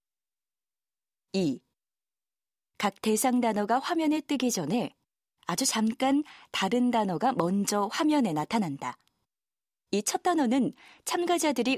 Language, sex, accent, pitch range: Korean, female, native, 200-275 Hz